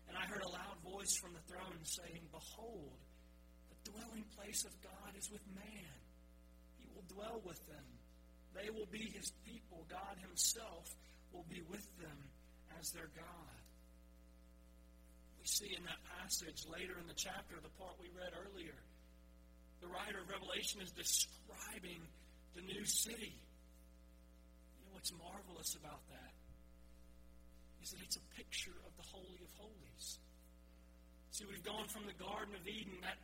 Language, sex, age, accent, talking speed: English, male, 40-59, American, 155 wpm